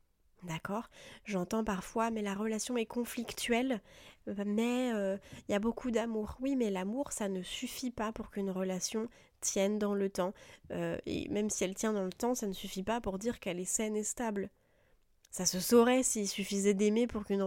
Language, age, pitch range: French, 20-39, 185-225 Hz